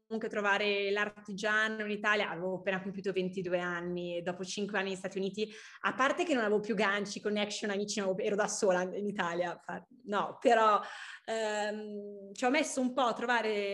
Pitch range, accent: 195-235 Hz, native